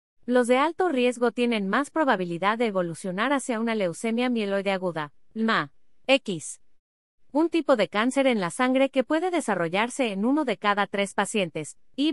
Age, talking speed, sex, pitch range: 30-49, 165 wpm, female, 195-260 Hz